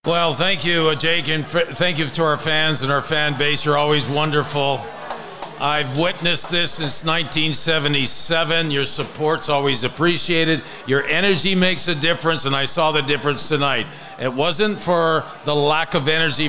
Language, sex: English, male